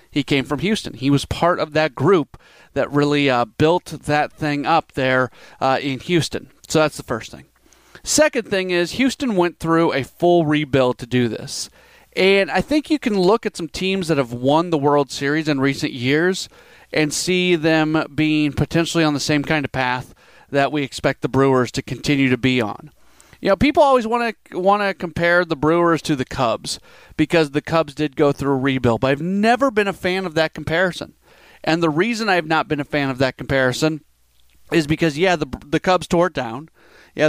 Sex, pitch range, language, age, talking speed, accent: male, 135-175 Hz, English, 40-59, 210 wpm, American